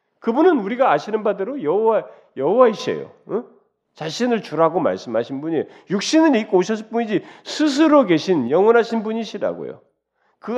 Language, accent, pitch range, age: Korean, native, 210-290 Hz, 40-59